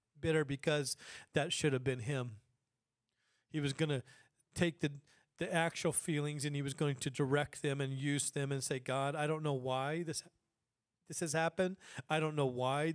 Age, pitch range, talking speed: 40-59, 150-180 Hz, 185 wpm